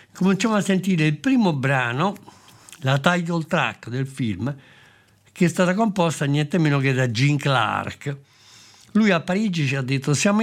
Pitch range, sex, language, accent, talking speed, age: 125-170 Hz, male, Italian, native, 160 wpm, 60-79